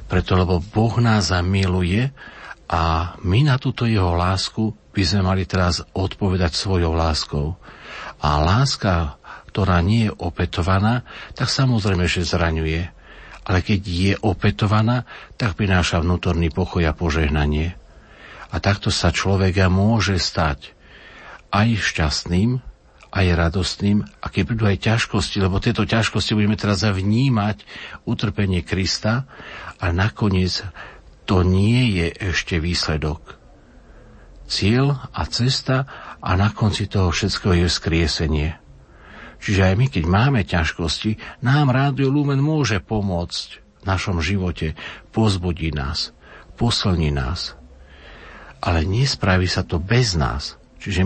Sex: male